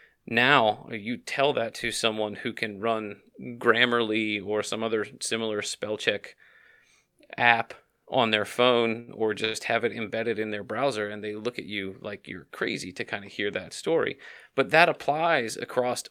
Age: 30-49